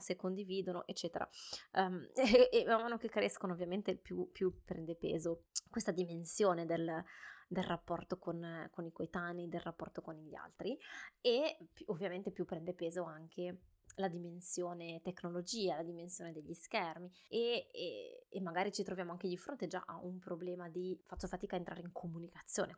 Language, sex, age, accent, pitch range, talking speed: Italian, female, 20-39, native, 170-195 Hz, 160 wpm